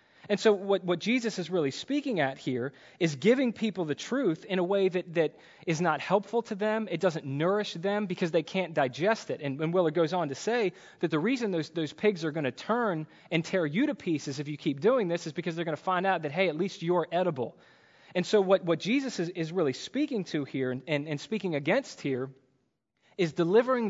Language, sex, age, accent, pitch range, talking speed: English, male, 20-39, American, 140-185 Hz, 235 wpm